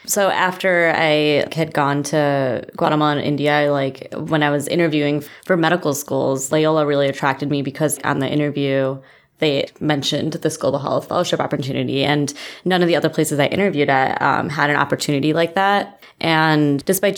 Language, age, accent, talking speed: English, 20-39, American, 170 wpm